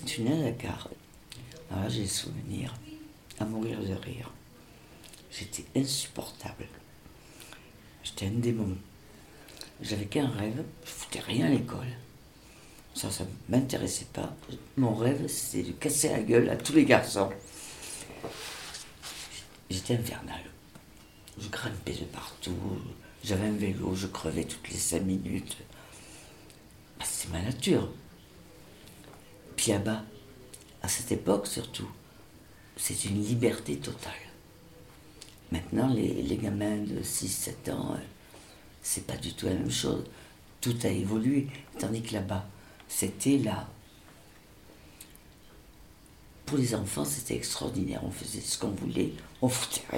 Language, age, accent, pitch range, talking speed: French, 60-79, French, 95-125 Hz, 130 wpm